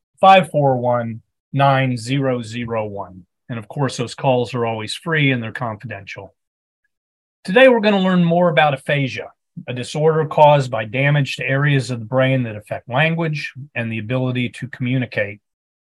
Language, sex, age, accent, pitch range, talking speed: English, male, 40-59, American, 120-150 Hz, 140 wpm